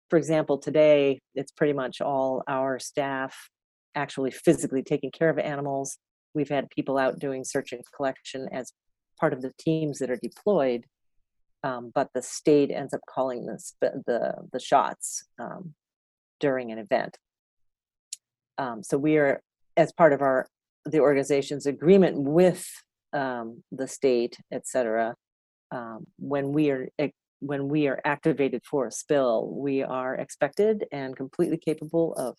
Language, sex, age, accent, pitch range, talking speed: English, female, 40-59, American, 130-155 Hz, 150 wpm